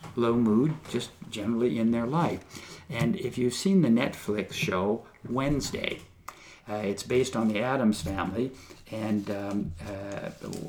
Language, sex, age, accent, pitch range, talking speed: English, male, 60-79, American, 105-125 Hz, 140 wpm